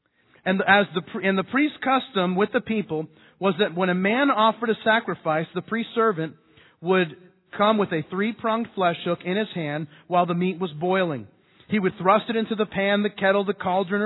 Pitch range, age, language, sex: 165-210 Hz, 40-59, English, male